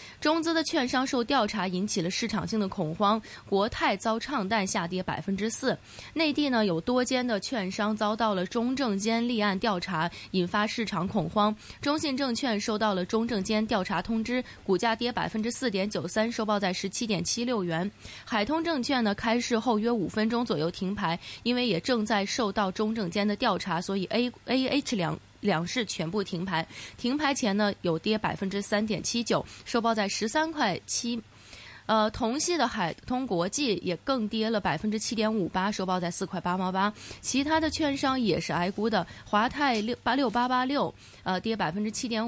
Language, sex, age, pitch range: Chinese, female, 20-39, 195-245 Hz